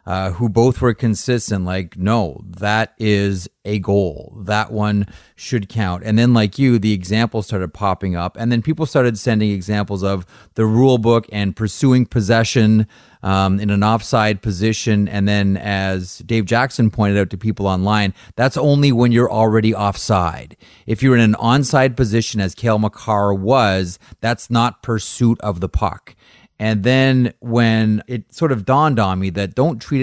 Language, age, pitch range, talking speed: English, 30-49, 95-120 Hz, 170 wpm